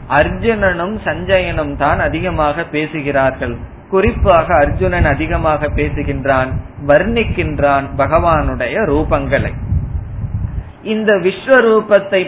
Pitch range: 135-190 Hz